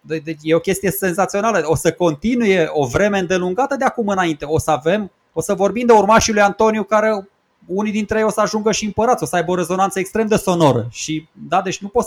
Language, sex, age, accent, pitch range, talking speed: Romanian, male, 20-39, native, 155-215 Hz, 235 wpm